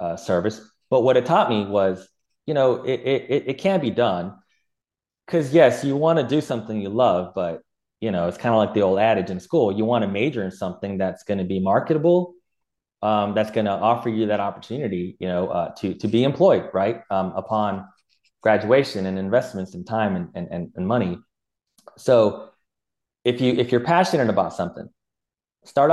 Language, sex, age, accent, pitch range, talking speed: English, male, 30-49, American, 95-120 Hz, 200 wpm